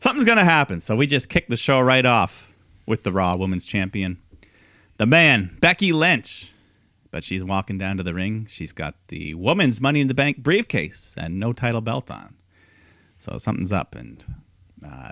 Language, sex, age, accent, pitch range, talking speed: English, male, 30-49, American, 90-130 Hz, 185 wpm